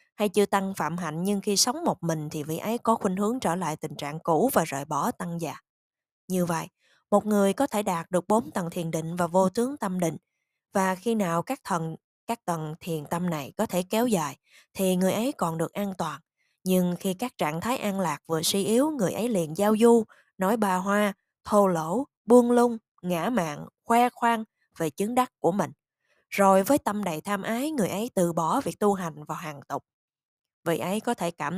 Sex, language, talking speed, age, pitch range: female, Vietnamese, 220 wpm, 20-39, 170-230 Hz